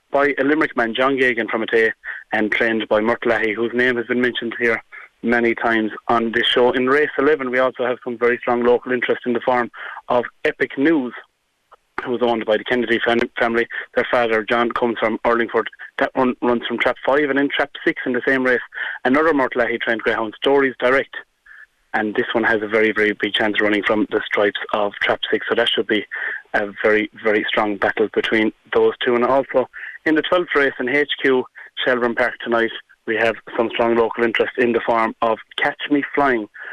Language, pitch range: English, 115-130 Hz